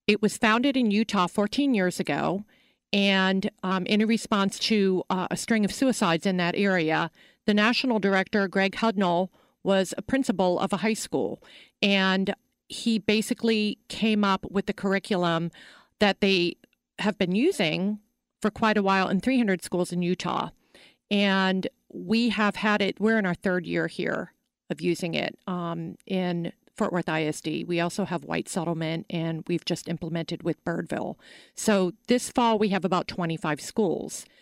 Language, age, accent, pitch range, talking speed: English, 40-59, American, 175-215 Hz, 160 wpm